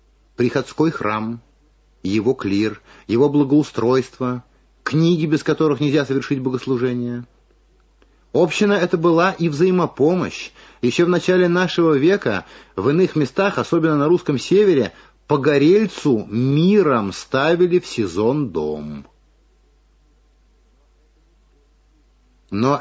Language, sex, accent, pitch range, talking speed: Russian, male, native, 120-175 Hz, 95 wpm